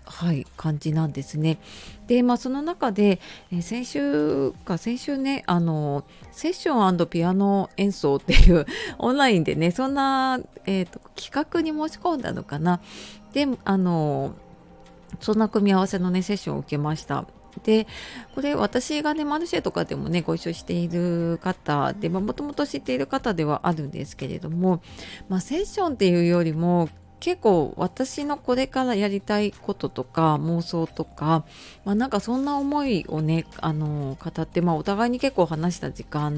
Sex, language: female, Japanese